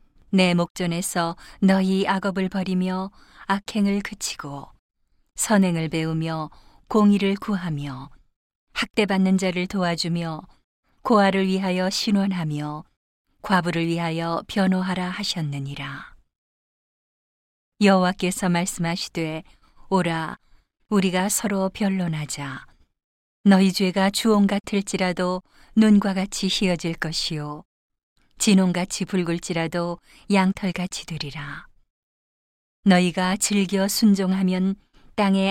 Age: 40-59